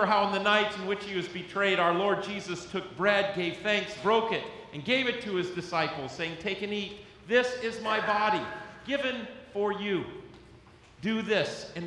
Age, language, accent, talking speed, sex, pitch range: 40-59, English, American, 190 wpm, male, 155-205 Hz